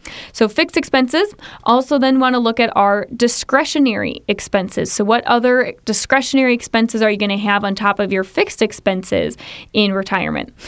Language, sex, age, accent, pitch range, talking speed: English, female, 20-39, American, 200-245 Hz, 170 wpm